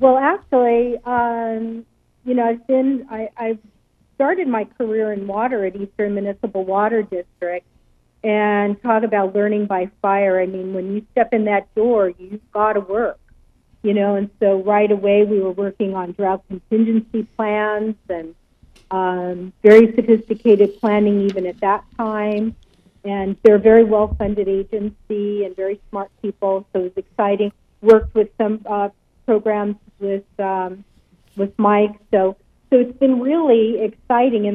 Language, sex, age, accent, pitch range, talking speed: English, female, 50-69, American, 195-225 Hz, 155 wpm